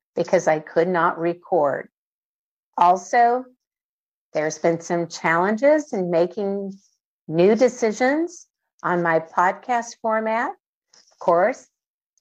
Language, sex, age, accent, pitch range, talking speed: English, female, 50-69, American, 165-230 Hz, 100 wpm